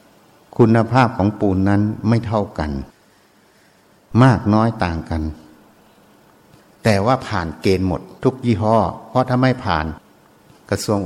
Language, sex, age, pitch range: Thai, male, 60-79, 90-115 Hz